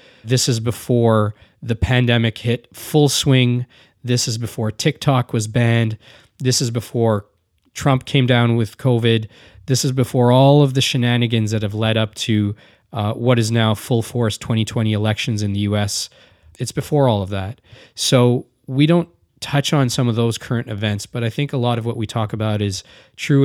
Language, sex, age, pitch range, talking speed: English, male, 20-39, 110-125 Hz, 185 wpm